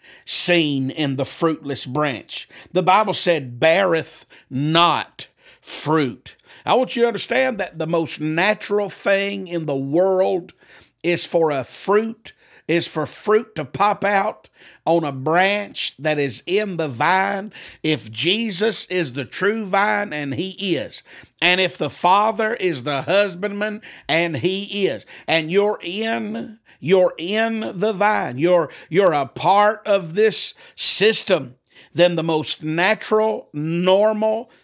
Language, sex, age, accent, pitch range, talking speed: English, male, 50-69, American, 160-200 Hz, 140 wpm